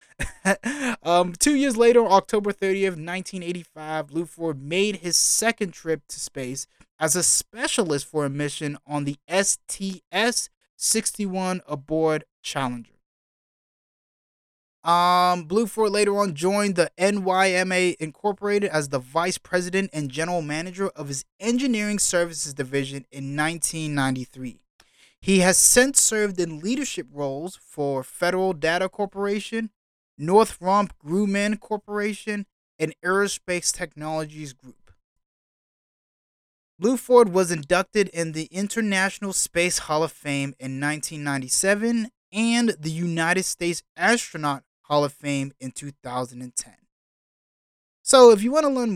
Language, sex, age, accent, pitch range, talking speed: English, male, 20-39, American, 145-200 Hz, 120 wpm